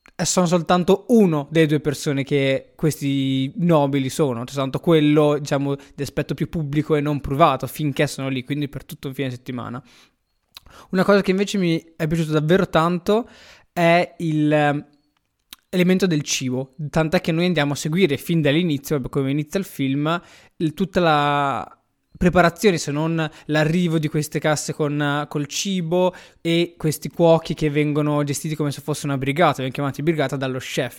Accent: native